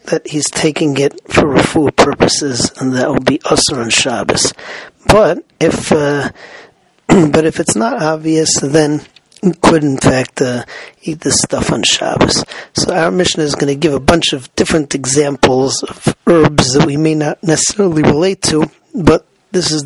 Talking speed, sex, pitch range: 170 wpm, male, 140-165 Hz